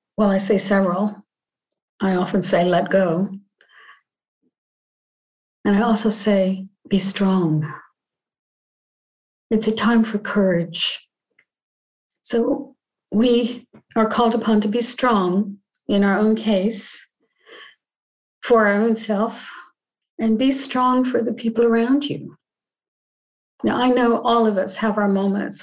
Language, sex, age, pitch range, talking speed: English, female, 50-69, 195-225 Hz, 125 wpm